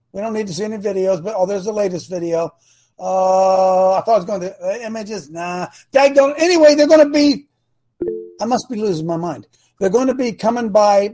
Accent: American